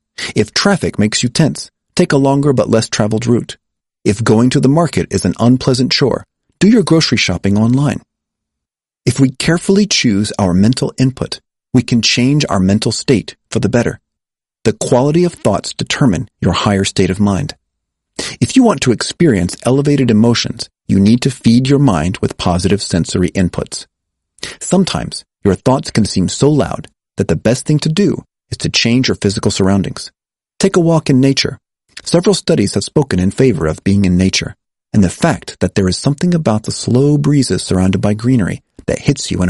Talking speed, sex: 185 wpm, male